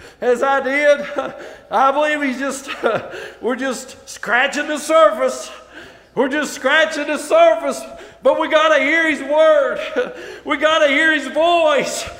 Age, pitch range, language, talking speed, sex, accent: 50-69, 255-310 Hz, English, 140 wpm, male, American